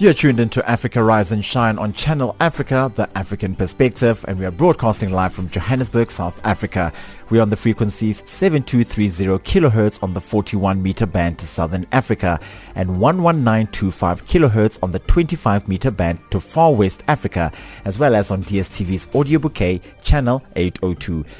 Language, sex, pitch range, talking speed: English, male, 95-125 Hz, 165 wpm